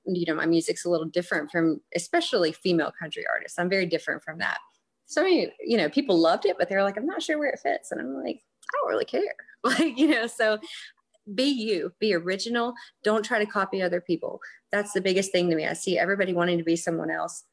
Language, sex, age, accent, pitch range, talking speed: English, female, 30-49, American, 175-235 Hz, 235 wpm